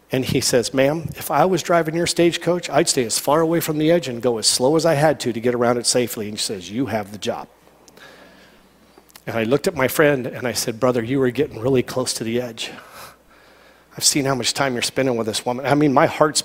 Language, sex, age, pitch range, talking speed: English, male, 40-59, 125-150 Hz, 255 wpm